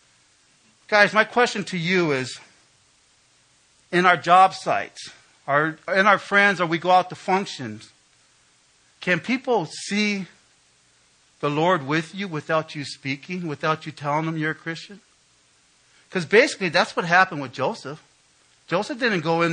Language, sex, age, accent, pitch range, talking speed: English, male, 50-69, American, 135-190 Hz, 145 wpm